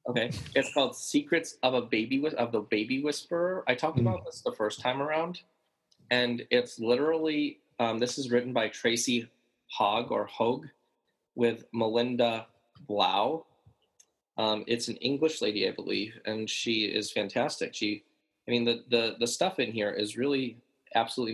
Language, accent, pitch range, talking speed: English, American, 115-140 Hz, 160 wpm